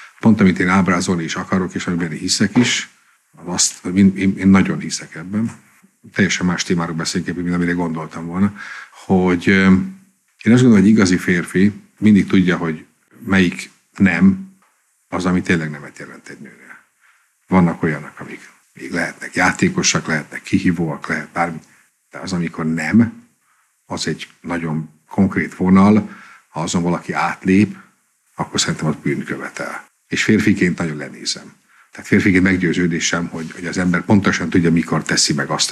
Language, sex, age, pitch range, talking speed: Hungarian, male, 50-69, 85-95 Hz, 150 wpm